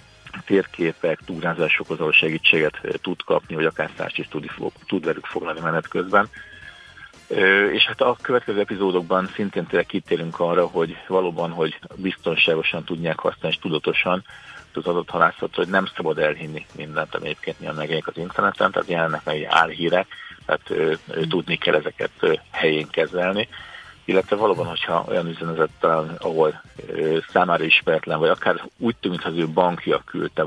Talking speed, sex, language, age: 155 wpm, male, Hungarian, 50-69